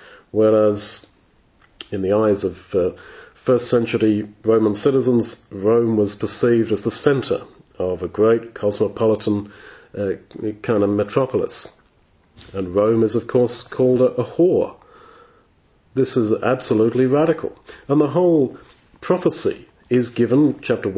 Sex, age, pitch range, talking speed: male, 40-59, 110-130 Hz, 125 wpm